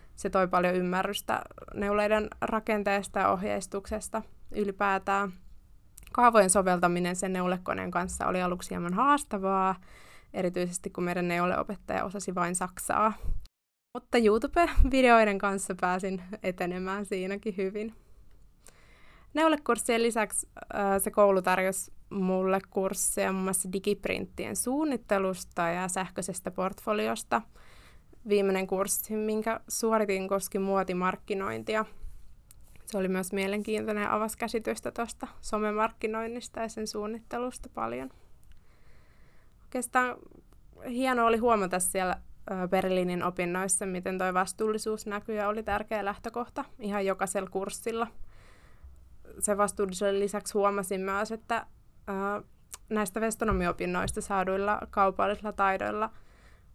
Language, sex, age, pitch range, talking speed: Finnish, female, 20-39, 185-220 Hz, 100 wpm